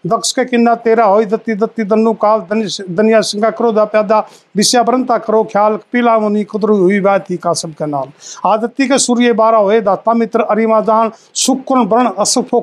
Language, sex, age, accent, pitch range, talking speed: Hindi, male, 50-69, native, 210-245 Hz, 110 wpm